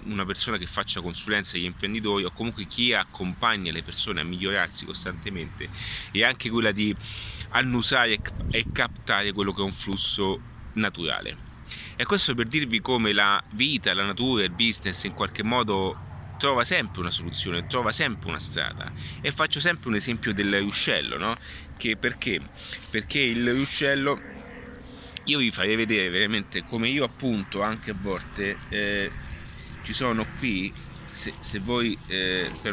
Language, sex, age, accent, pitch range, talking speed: Italian, male, 30-49, native, 95-115 Hz, 150 wpm